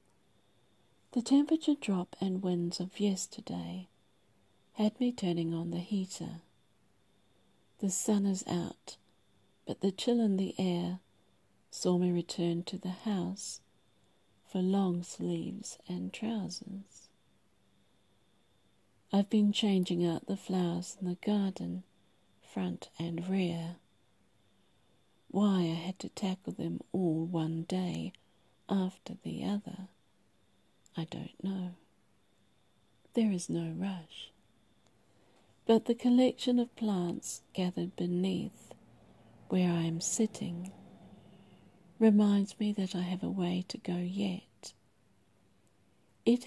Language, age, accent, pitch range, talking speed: English, 50-69, British, 160-200 Hz, 110 wpm